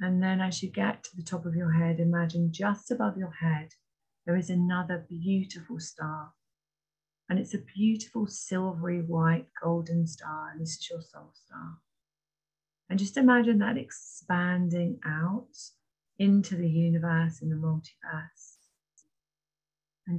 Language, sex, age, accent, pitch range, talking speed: English, female, 30-49, British, 160-185 Hz, 145 wpm